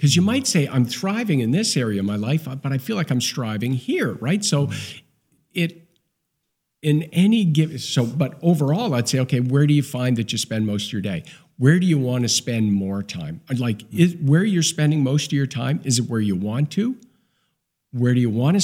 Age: 50-69